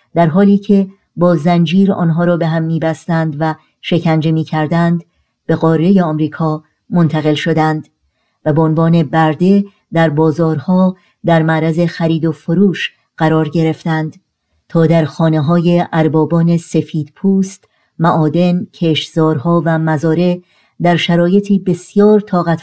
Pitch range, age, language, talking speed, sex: 165-180 Hz, 50-69, Persian, 120 wpm, male